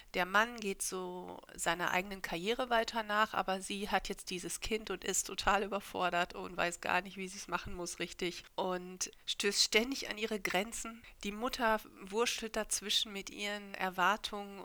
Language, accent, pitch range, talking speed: German, German, 180-220 Hz, 170 wpm